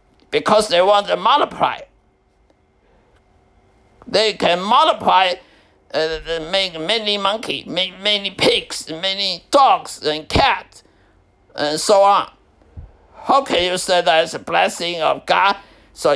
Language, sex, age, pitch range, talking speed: English, male, 60-79, 155-210 Hz, 130 wpm